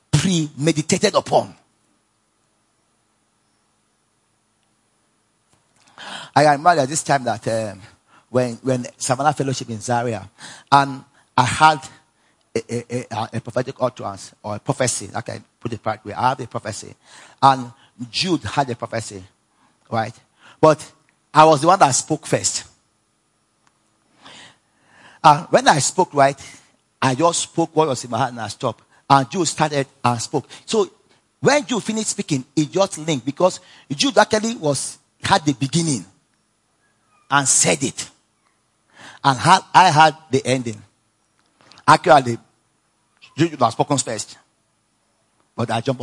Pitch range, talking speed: 110-155 Hz, 135 wpm